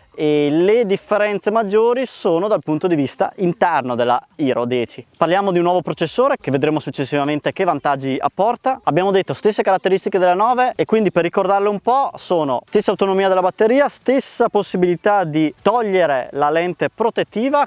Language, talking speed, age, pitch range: Italian, 165 wpm, 20-39, 150-215 Hz